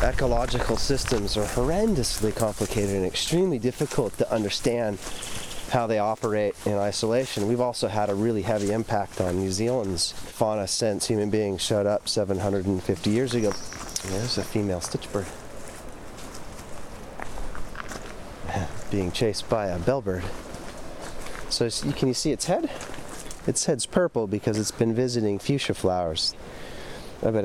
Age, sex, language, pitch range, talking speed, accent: 30-49, male, English, 100-120 Hz, 130 wpm, American